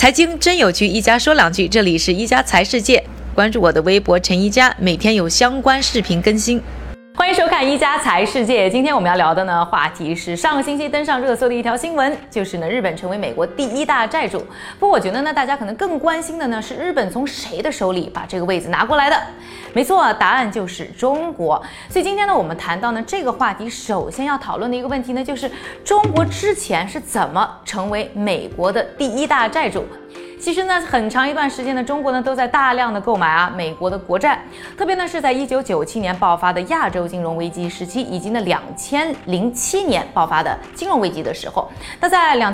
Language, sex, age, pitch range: Chinese, female, 20-39, 205-305 Hz